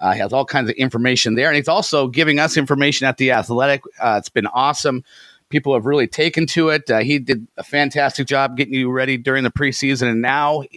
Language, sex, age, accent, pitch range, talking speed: English, male, 40-59, American, 125-155 Hz, 230 wpm